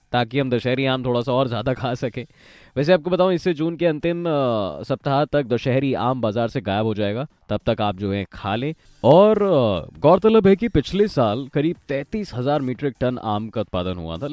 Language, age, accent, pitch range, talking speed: Hindi, 20-39, native, 105-150 Hz, 205 wpm